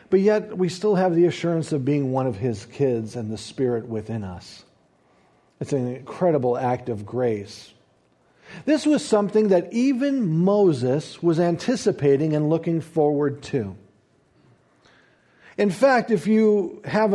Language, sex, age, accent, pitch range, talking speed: English, male, 50-69, American, 165-220 Hz, 145 wpm